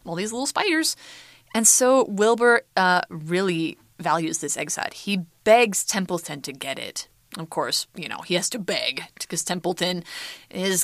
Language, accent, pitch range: Chinese, American, 175-275 Hz